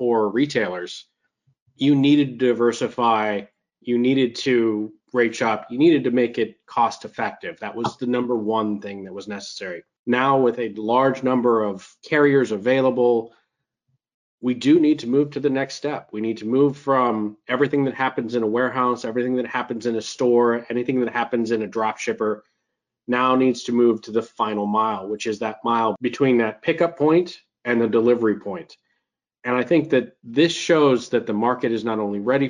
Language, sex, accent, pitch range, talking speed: English, male, American, 110-135 Hz, 185 wpm